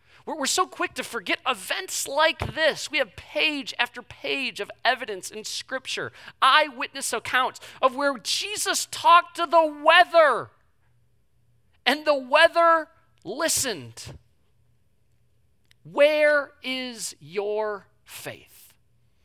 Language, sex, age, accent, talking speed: English, male, 40-59, American, 105 wpm